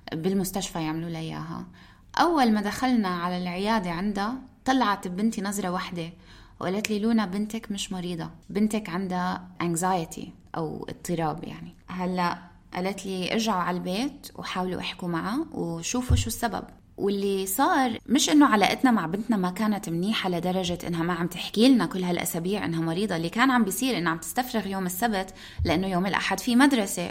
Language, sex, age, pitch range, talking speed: Arabic, female, 20-39, 170-220 Hz, 155 wpm